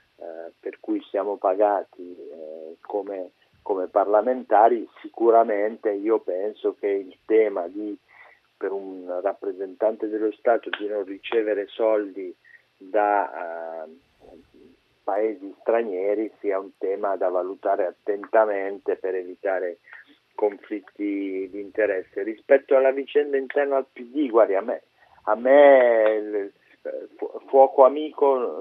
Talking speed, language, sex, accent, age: 100 wpm, Italian, male, native, 50-69